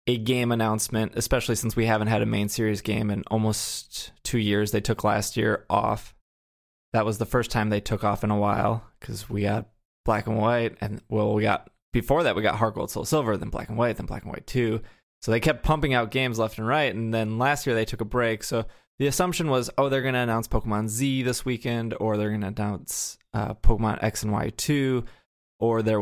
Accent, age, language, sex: American, 20-39, English, male